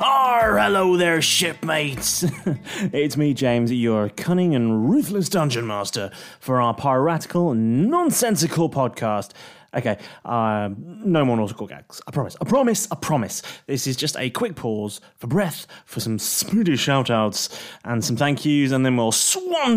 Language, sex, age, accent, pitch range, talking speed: English, male, 30-49, British, 115-170 Hz, 150 wpm